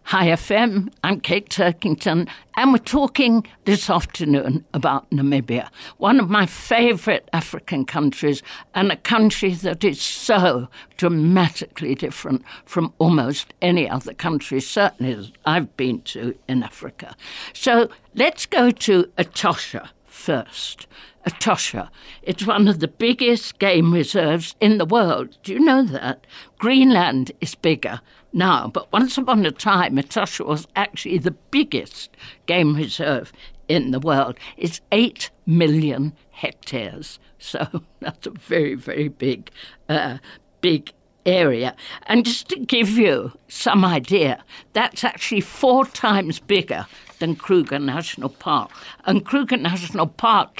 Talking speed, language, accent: 130 wpm, English, British